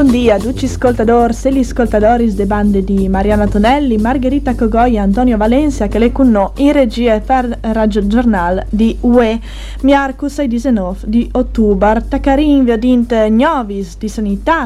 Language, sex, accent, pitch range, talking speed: Italian, female, native, 205-260 Hz, 145 wpm